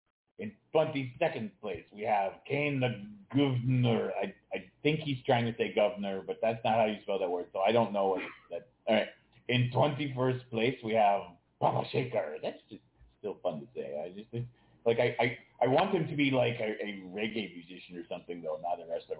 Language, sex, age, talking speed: English, male, 30-49, 205 wpm